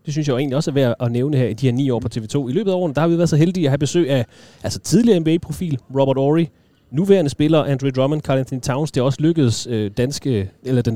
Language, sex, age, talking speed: Danish, male, 30-49, 285 wpm